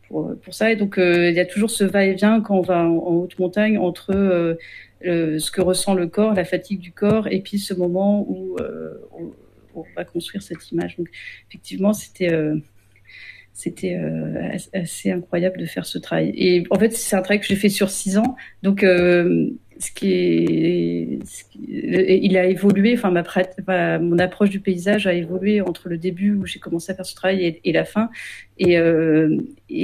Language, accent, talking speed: French, French, 210 wpm